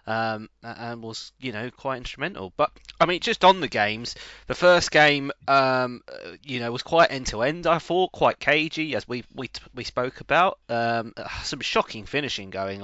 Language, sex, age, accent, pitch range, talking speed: English, male, 20-39, British, 100-125 Hz, 185 wpm